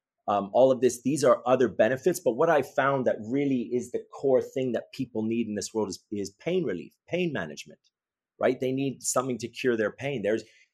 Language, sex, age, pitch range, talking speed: English, male, 30-49, 105-135 Hz, 220 wpm